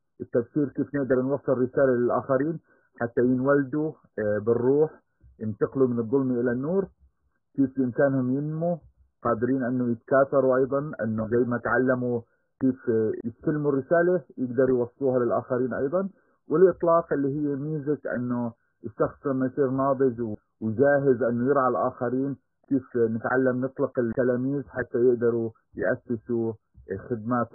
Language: Arabic